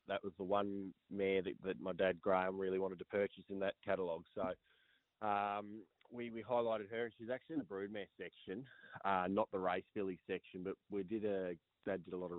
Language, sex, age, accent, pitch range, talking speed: English, male, 20-39, Australian, 95-105 Hz, 220 wpm